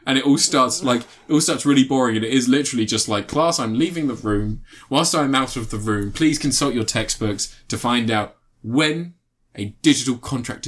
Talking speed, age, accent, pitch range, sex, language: 215 wpm, 20-39, British, 110-130 Hz, male, English